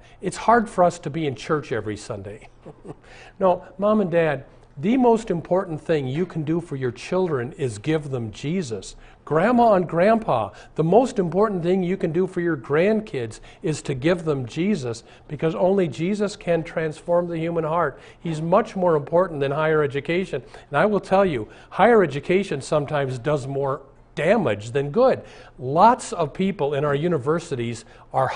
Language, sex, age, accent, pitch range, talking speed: English, male, 50-69, American, 135-185 Hz, 170 wpm